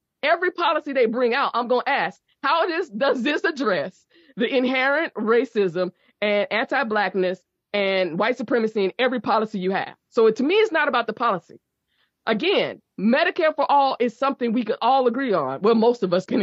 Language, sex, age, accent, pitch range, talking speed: English, female, 20-39, American, 210-275 Hz, 190 wpm